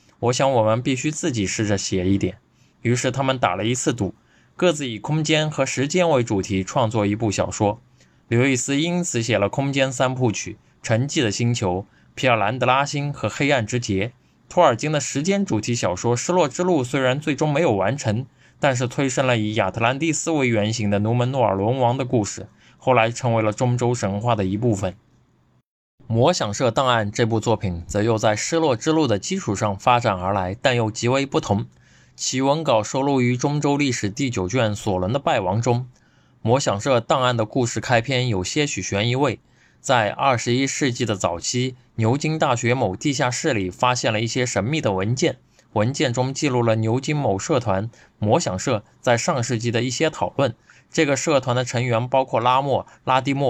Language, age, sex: Chinese, 20-39, male